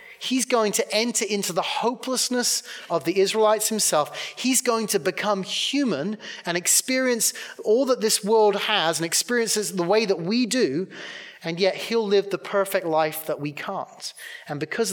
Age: 30-49